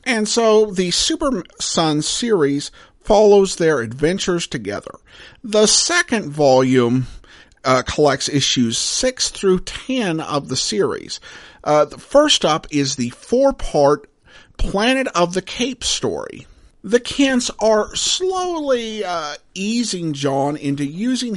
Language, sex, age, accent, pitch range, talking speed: English, male, 50-69, American, 155-230 Hz, 120 wpm